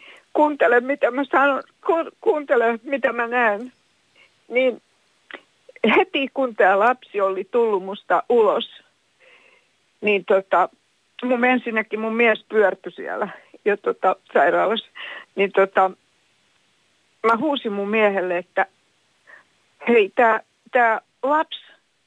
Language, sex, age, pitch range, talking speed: Finnish, female, 60-79, 195-270 Hz, 105 wpm